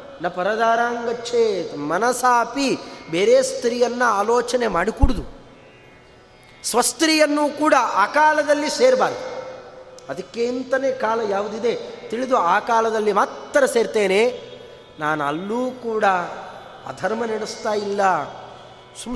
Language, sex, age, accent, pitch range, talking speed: Kannada, male, 30-49, native, 200-275 Hz, 90 wpm